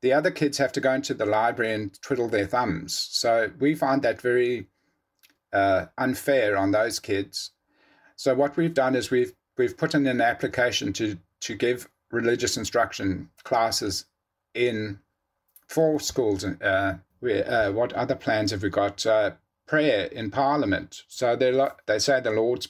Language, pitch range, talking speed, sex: English, 100-135 Hz, 165 wpm, male